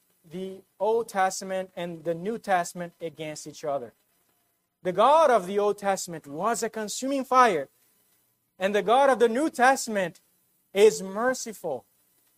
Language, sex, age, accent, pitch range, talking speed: English, male, 40-59, American, 150-220 Hz, 140 wpm